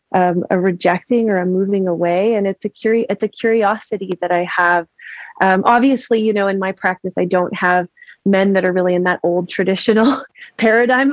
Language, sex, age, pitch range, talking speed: English, female, 20-39, 190-235 Hz, 195 wpm